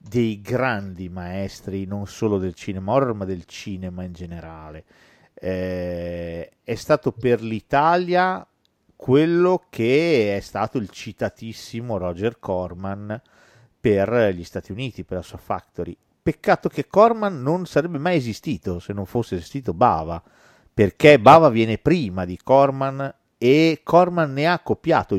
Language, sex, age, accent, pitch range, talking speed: Italian, male, 40-59, native, 95-140 Hz, 135 wpm